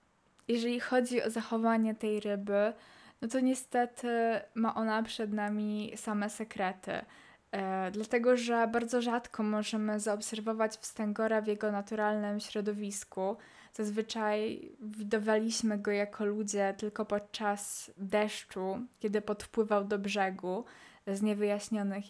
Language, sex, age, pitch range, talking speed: Polish, female, 20-39, 205-220 Hz, 110 wpm